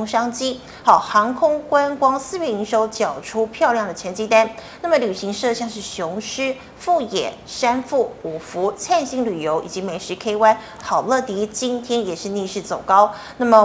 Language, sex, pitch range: Chinese, female, 200-255 Hz